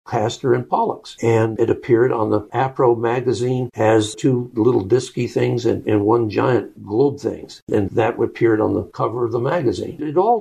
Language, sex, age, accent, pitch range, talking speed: English, male, 60-79, American, 120-160 Hz, 185 wpm